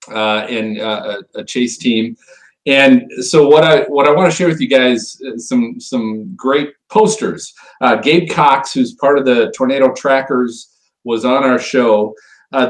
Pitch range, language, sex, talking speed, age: 125-155 Hz, English, male, 175 wpm, 40-59